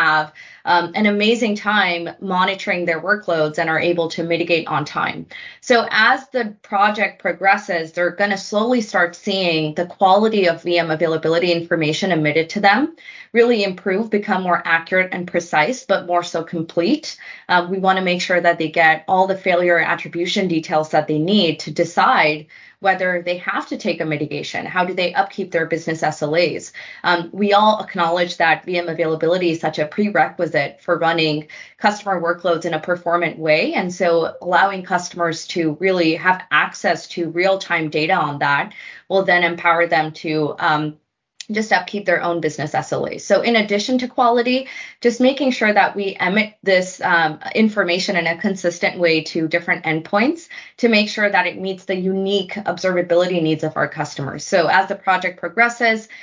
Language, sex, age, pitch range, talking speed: English, female, 20-39, 165-195 Hz, 170 wpm